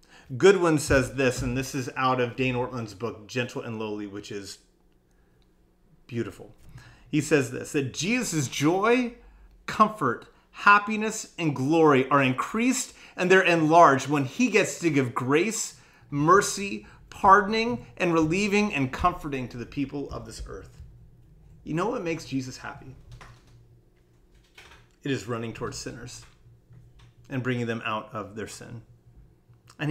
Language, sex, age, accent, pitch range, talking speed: English, male, 30-49, American, 120-175 Hz, 140 wpm